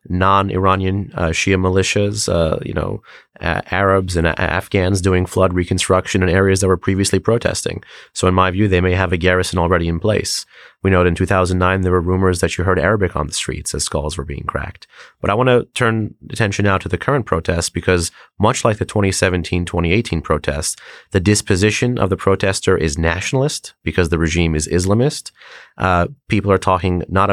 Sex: male